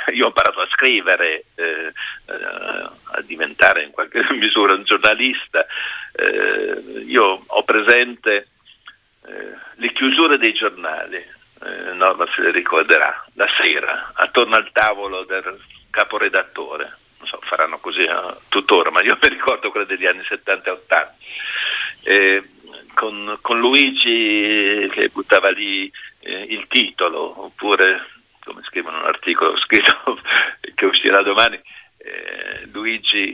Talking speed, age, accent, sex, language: 130 wpm, 50-69, native, male, Italian